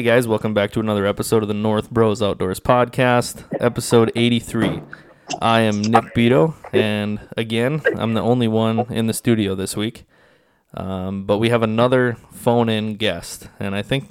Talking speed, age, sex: 165 wpm, 20-39, male